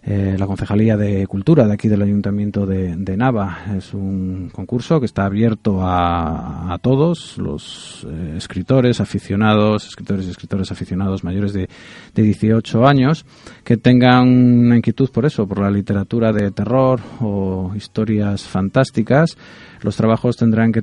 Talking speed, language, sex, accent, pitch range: 145 wpm, Spanish, male, Spanish, 95-115 Hz